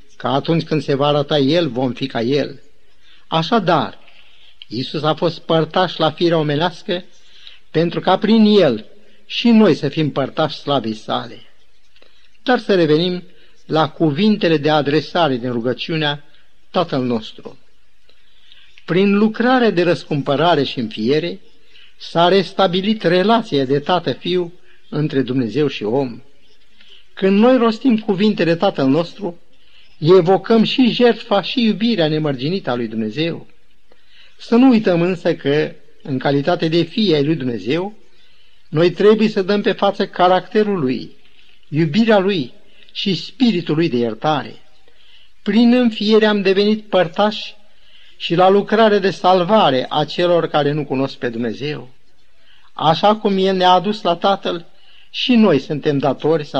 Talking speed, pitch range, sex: 135 wpm, 145-205 Hz, male